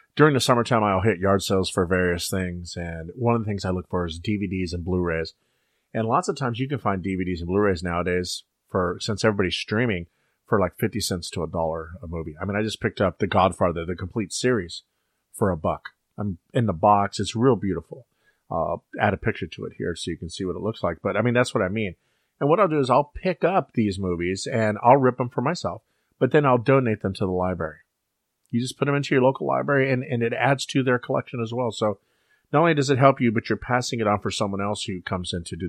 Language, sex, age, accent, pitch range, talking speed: English, male, 40-59, American, 90-125 Hz, 250 wpm